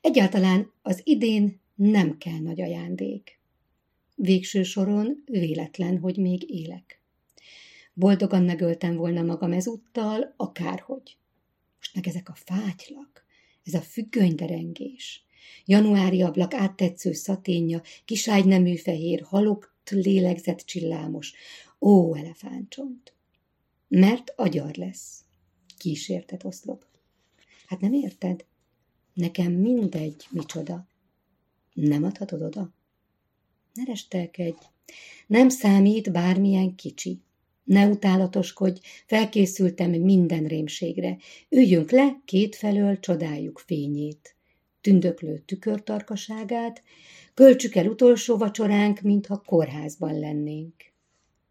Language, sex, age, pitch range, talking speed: Hungarian, female, 50-69, 160-205 Hz, 90 wpm